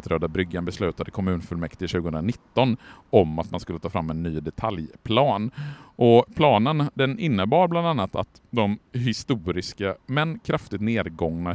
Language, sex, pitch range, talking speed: Swedish, male, 90-130 Hz, 125 wpm